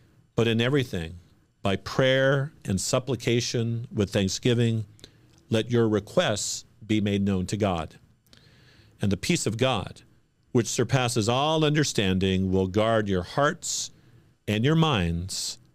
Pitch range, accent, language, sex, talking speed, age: 100-130 Hz, American, English, male, 125 wpm, 50-69